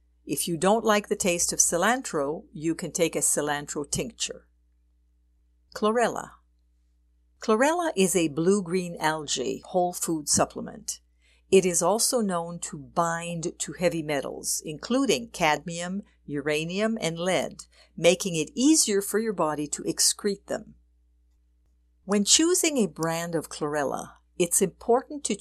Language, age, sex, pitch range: English, 50-69, female, 145-200 Hz